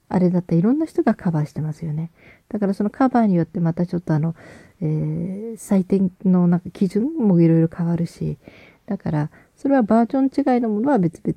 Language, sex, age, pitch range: Japanese, female, 40-59, 160-200 Hz